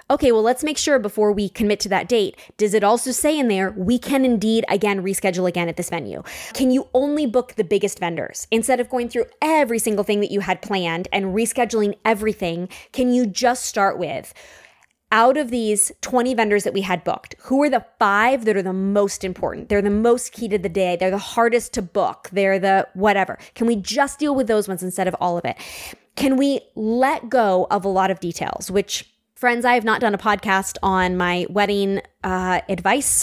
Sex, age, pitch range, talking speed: female, 20-39, 195-235 Hz, 215 wpm